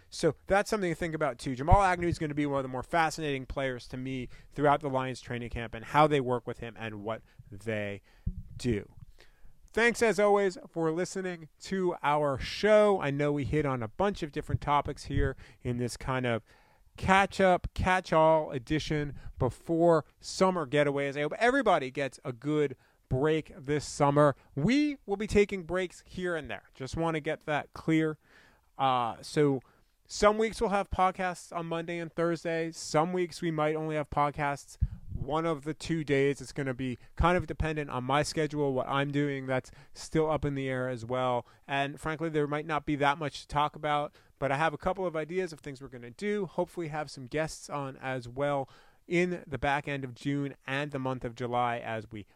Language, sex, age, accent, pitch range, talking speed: English, male, 30-49, American, 130-165 Hz, 200 wpm